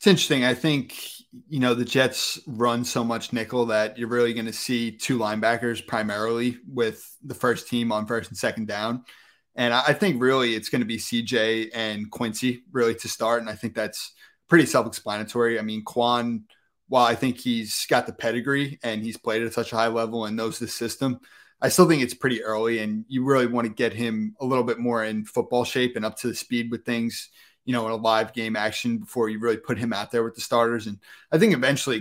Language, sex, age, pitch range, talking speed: English, male, 30-49, 115-125 Hz, 225 wpm